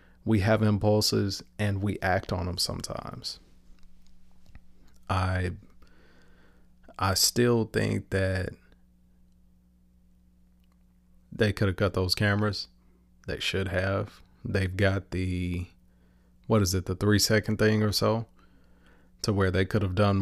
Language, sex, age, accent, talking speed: English, male, 30-49, American, 120 wpm